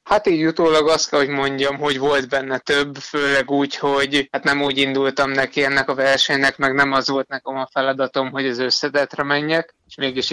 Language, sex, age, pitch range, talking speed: Hungarian, male, 20-39, 135-145 Hz, 205 wpm